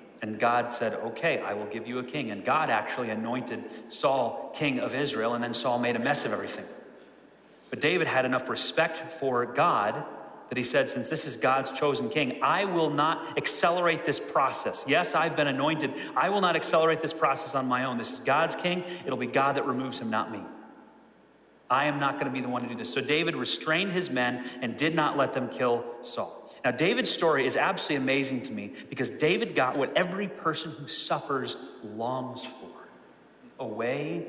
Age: 30-49